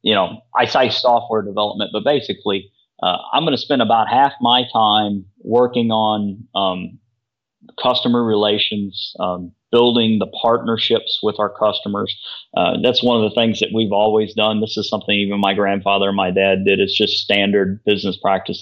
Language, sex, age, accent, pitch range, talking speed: English, male, 30-49, American, 100-115 Hz, 170 wpm